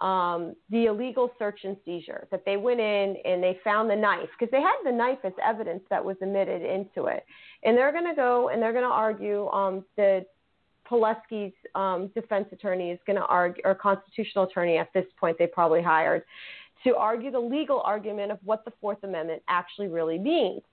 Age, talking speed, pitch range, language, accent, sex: 30-49, 200 wpm, 190-240 Hz, English, American, female